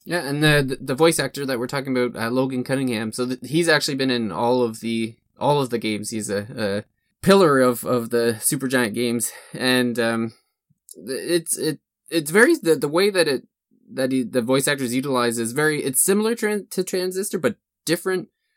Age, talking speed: 20-39, 200 wpm